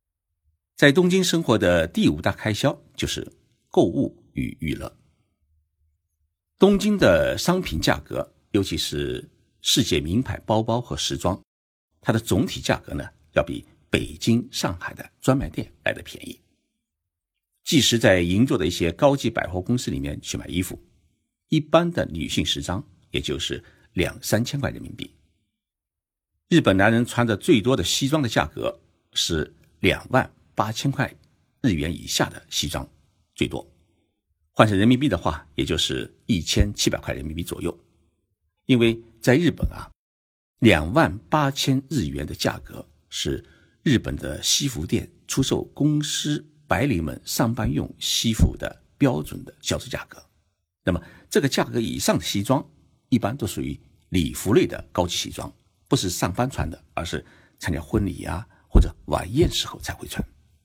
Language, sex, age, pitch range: Chinese, male, 60-79, 80-130 Hz